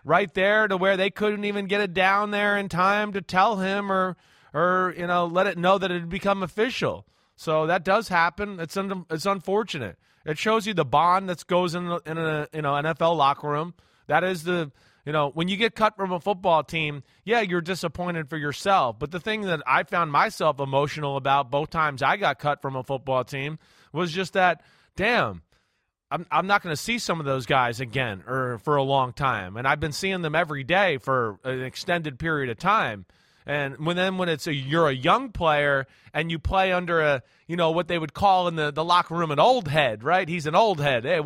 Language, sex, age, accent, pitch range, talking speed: English, male, 30-49, American, 145-190 Hz, 225 wpm